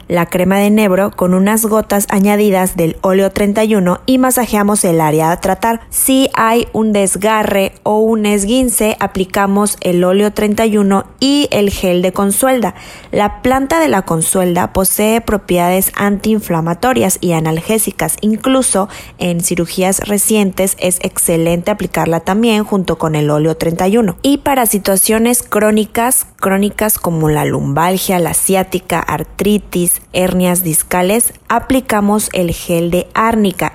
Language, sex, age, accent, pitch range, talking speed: Spanish, female, 20-39, Mexican, 180-220 Hz, 130 wpm